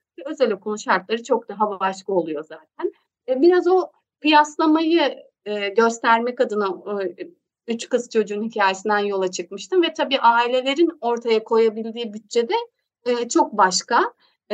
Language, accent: Turkish, native